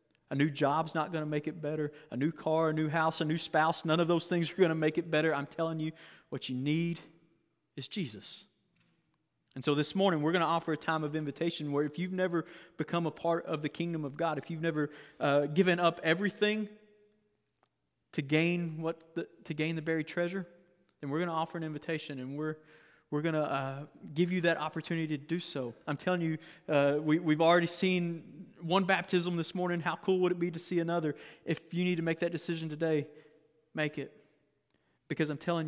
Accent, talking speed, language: American, 215 wpm, English